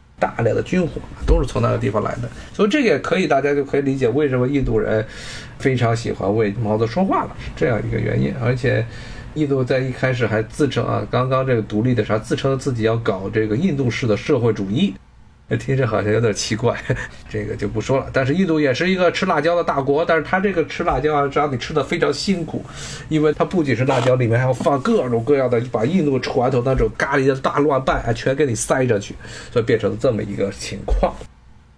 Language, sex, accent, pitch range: Chinese, male, native, 115-165 Hz